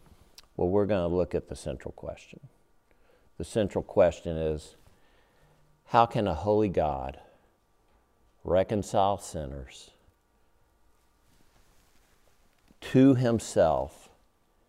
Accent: American